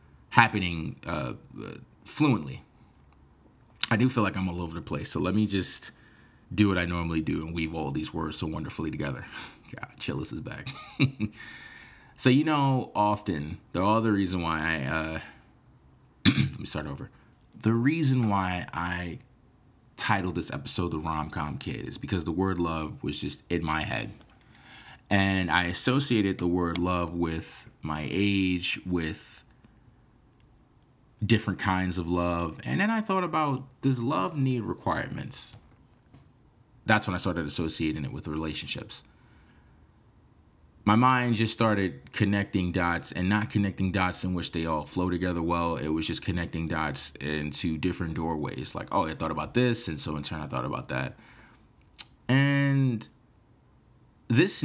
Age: 30-49